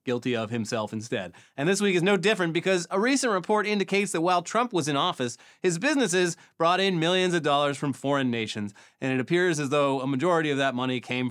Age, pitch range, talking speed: 30-49, 125-170 Hz, 225 wpm